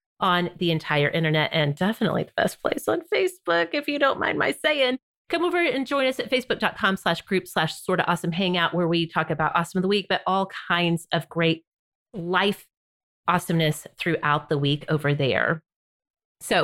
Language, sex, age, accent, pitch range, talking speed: English, female, 30-49, American, 170-240 Hz, 185 wpm